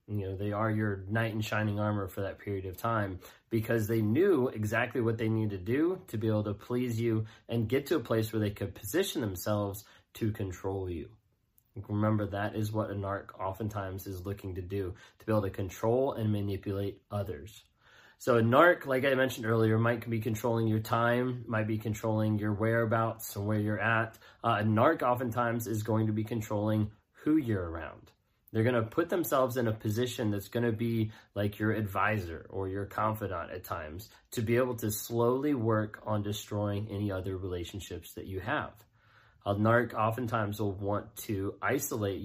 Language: English